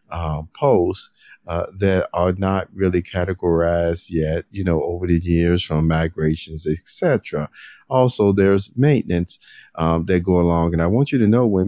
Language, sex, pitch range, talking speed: English, male, 85-100 Hz, 160 wpm